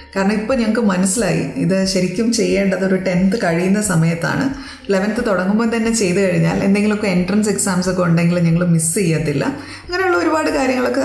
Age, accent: 20-39, native